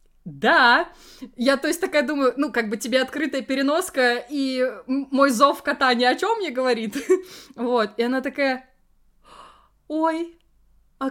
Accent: native